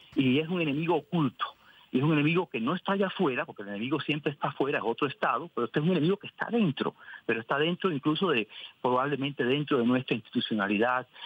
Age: 50-69